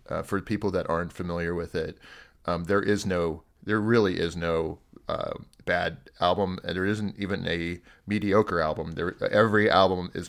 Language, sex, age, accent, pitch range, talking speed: English, male, 30-49, American, 85-110 Hz, 175 wpm